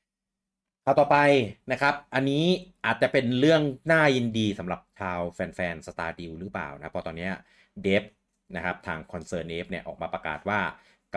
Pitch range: 90-145 Hz